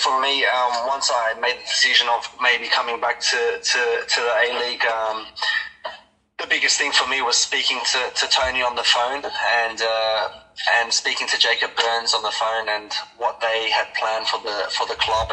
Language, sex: English, male